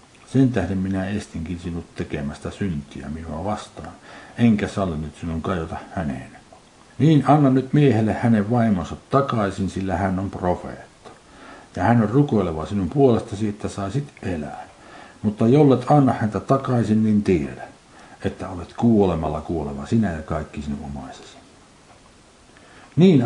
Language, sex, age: Finnish, male, 60-79